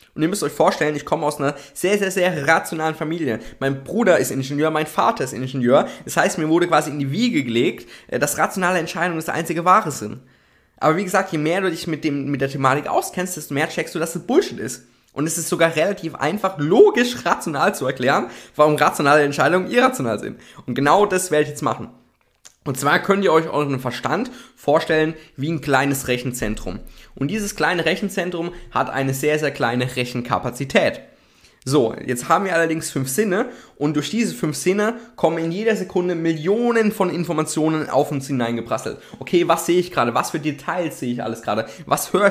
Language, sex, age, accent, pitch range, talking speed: German, male, 20-39, German, 140-185 Hz, 200 wpm